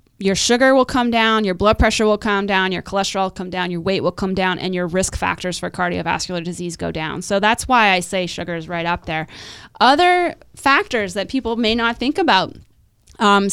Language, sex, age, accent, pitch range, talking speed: English, female, 20-39, American, 180-210 Hz, 215 wpm